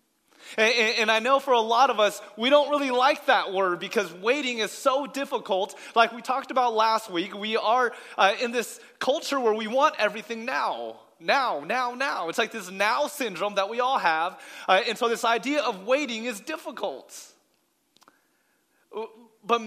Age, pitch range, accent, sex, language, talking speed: 30-49, 190-250 Hz, American, male, English, 170 wpm